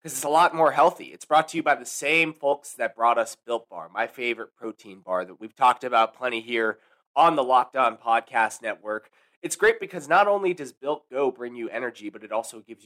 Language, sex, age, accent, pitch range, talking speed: English, male, 20-39, American, 115-160 Hz, 230 wpm